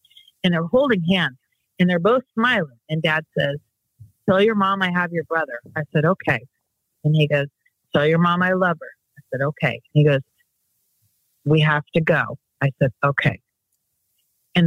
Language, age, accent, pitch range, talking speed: English, 40-59, American, 145-175 Hz, 180 wpm